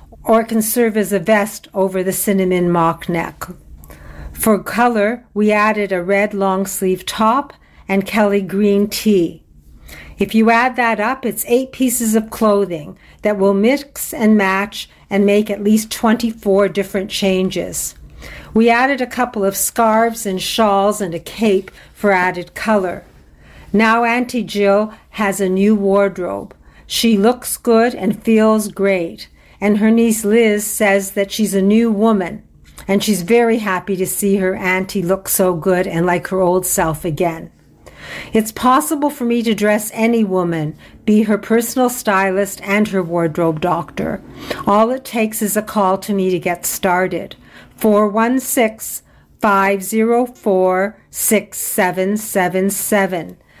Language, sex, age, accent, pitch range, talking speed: English, female, 60-79, American, 190-225 Hz, 140 wpm